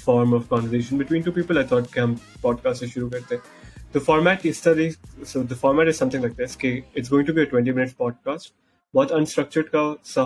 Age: 20-39